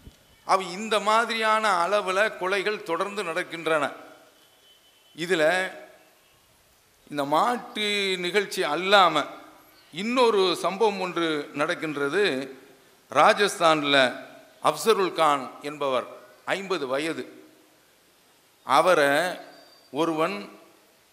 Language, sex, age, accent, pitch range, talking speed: English, male, 50-69, Indian, 140-195 Hz, 65 wpm